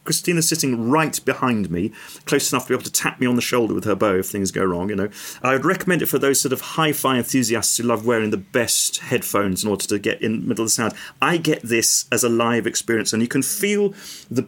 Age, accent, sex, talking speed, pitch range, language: 40-59, British, male, 260 wpm, 105-135 Hz, English